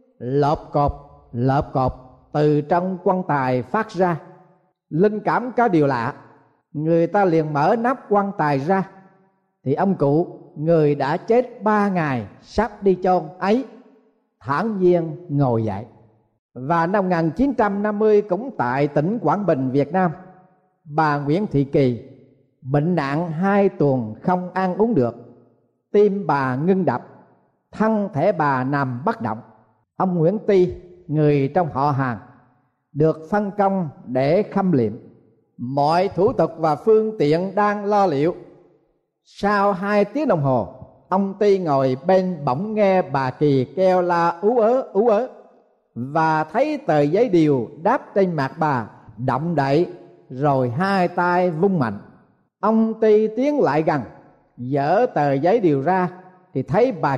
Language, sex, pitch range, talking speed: Vietnamese, male, 135-195 Hz, 150 wpm